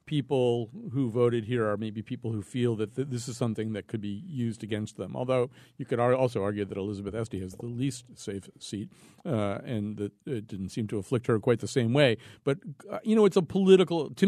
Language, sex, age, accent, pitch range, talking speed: English, male, 50-69, American, 115-150 Hz, 225 wpm